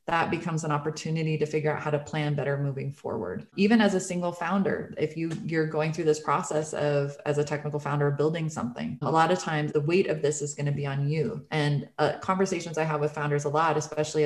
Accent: American